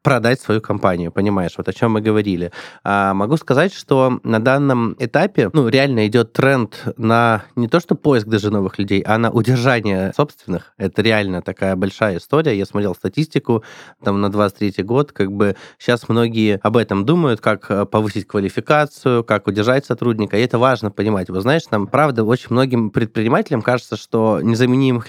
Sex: male